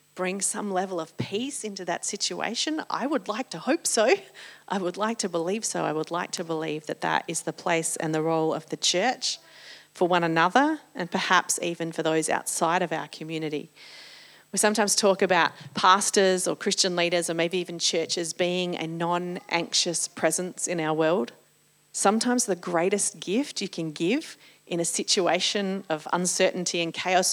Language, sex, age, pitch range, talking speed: English, female, 40-59, 165-205 Hz, 180 wpm